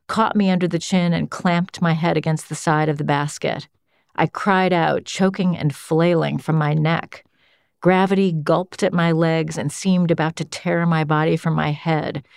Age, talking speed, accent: 40-59, 190 wpm, American